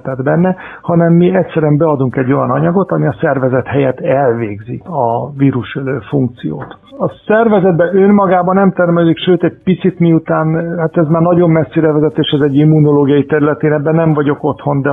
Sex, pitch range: male, 130-155 Hz